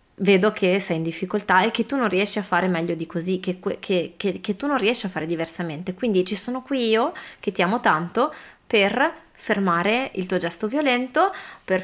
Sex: female